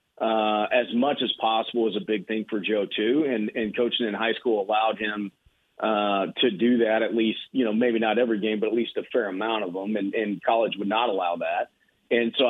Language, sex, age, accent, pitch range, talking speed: English, male, 40-59, American, 105-125 Hz, 235 wpm